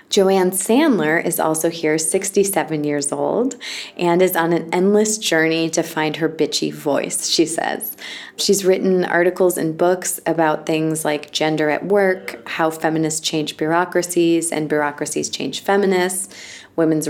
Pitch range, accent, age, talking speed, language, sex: 155-195 Hz, American, 20-39, 145 wpm, English, female